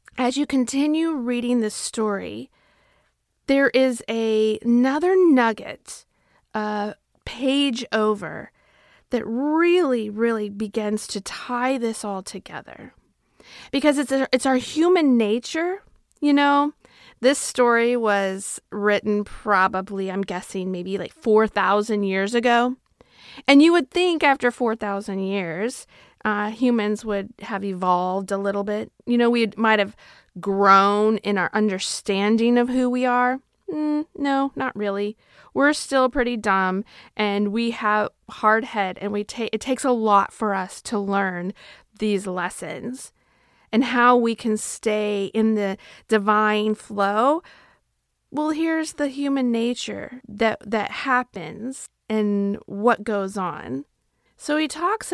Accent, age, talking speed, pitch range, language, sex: American, 40-59, 130 wpm, 205-260 Hz, English, female